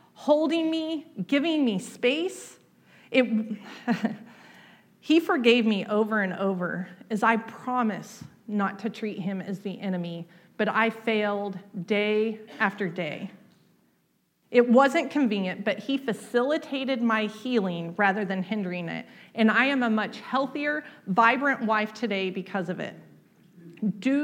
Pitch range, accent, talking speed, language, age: 205-280 Hz, American, 130 wpm, English, 40-59